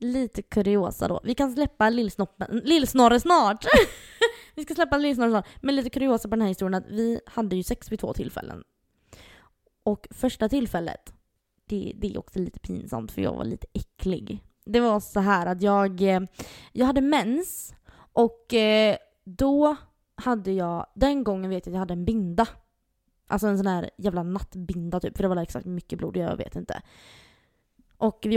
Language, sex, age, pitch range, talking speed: Swedish, female, 20-39, 195-235 Hz, 175 wpm